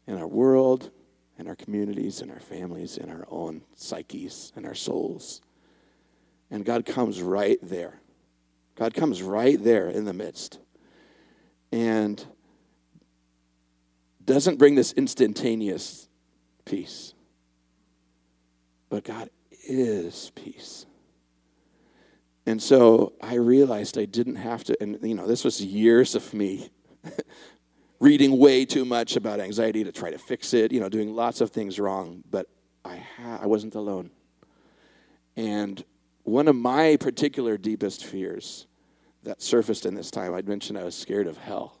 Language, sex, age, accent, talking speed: English, male, 50-69, American, 140 wpm